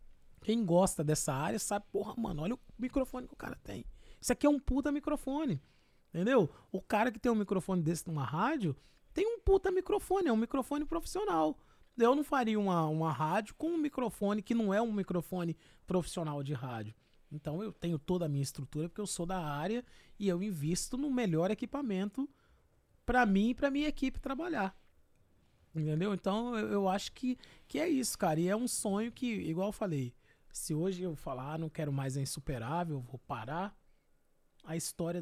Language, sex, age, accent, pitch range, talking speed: Portuguese, male, 20-39, Brazilian, 150-215 Hz, 190 wpm